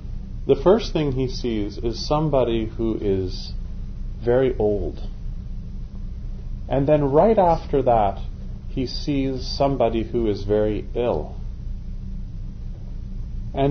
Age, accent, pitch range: 30-49, American, 95-130 Hz